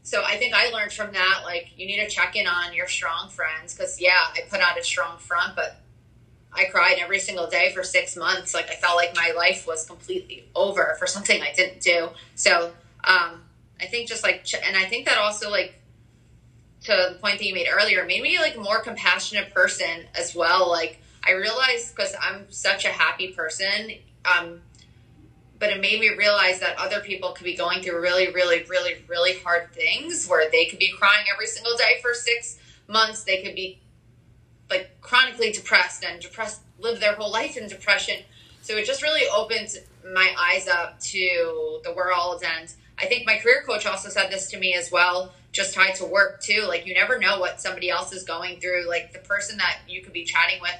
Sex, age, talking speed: female, 20-39, 210 wpm